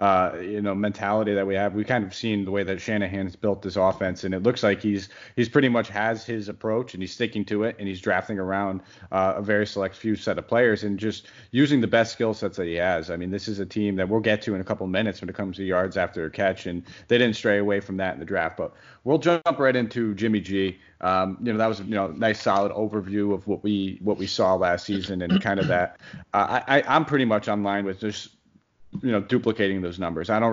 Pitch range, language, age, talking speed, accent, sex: 95-105 Hz, English, 30-49, 265 wpm, American, male